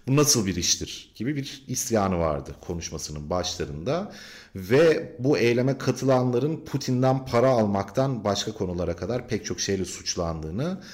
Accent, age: native, 40-59